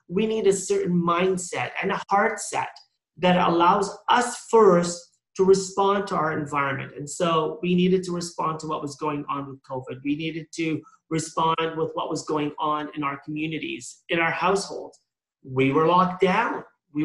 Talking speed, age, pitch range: 180 wpm, 40-59, 155-200 Hz